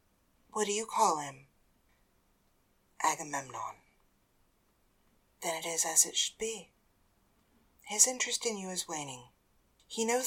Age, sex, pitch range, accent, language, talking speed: 40-59, female, 185-285 Hz, American, English, 125 wpm